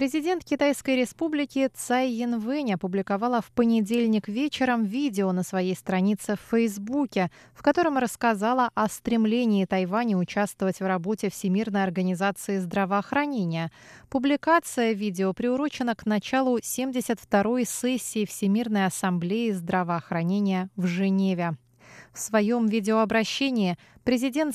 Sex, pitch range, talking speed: female, 185-235 Hz, 105 wpm